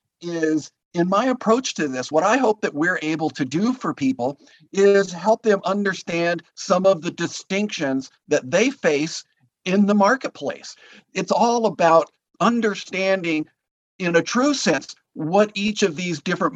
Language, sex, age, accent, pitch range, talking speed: English, male, 50-69, American, 155-205 Hz, 155 wpm